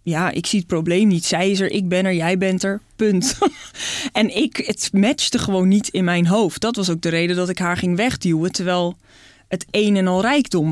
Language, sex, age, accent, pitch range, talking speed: Dutch, female, 20-39, Dutch, 170-210 Hz, 230 wpm